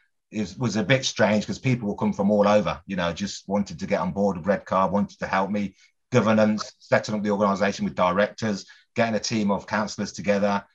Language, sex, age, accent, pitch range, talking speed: English, male, 30-49, British, 100-130 Hz, 225 wpm